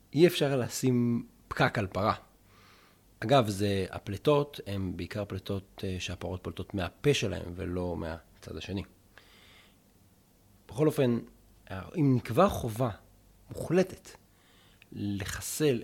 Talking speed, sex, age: 100 wpm, male, 30-49